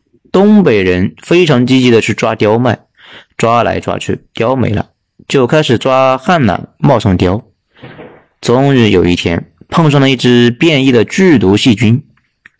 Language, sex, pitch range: Chinese, male, 105-145 Hz